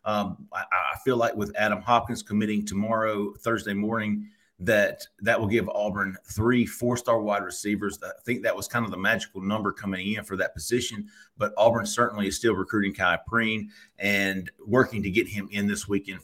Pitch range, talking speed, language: 95-110 Hz, 190 wpm, English